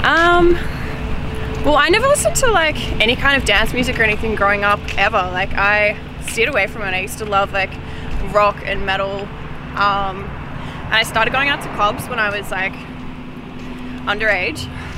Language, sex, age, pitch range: English, female, 20-39, 190-220 Hz